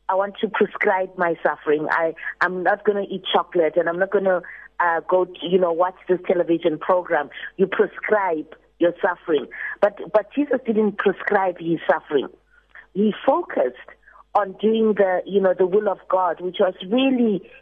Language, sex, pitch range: English, female, 180-230 Hz